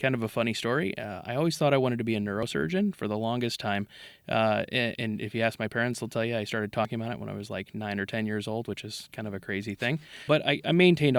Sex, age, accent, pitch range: male, 20-39, American, 110-125 Hz